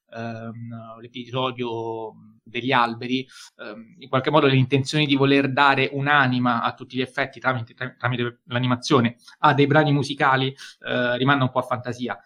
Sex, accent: male, native